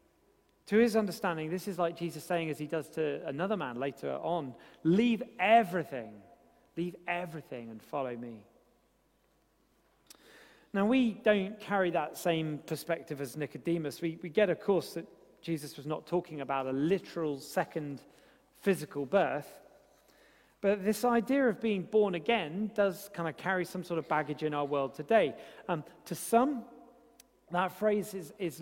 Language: English